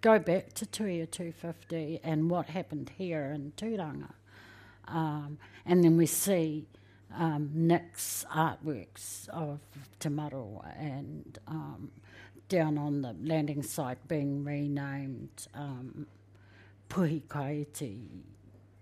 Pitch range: 110-165 Hz